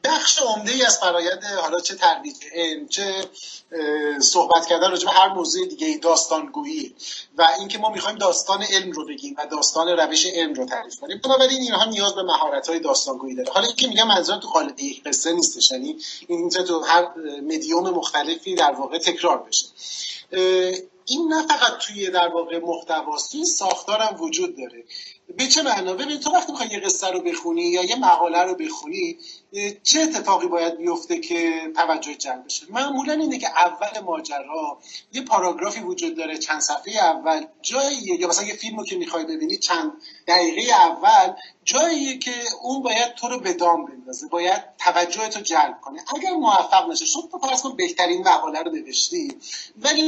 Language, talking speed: Persian, 170 wpm